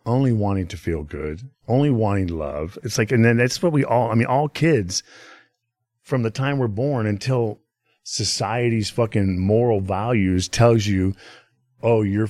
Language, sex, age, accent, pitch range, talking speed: English, male, 40-59, American, 95-120 Hz, 165 wpm